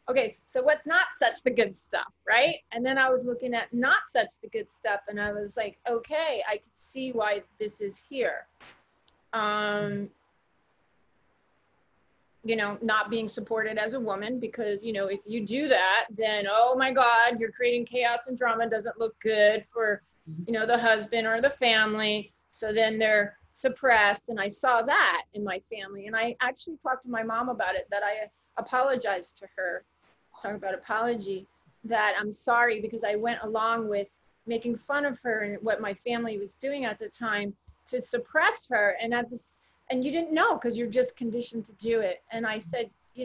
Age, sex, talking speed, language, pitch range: 30-49, female, 190 wpm, English, 210-245 Hz